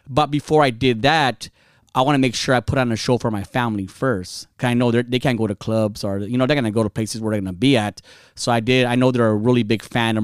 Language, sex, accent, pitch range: English, male, American, 110-140 Hz